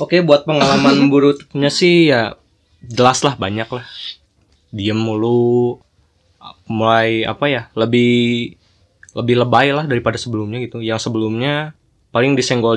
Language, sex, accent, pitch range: Indonesian, male, native, 105-130 Hz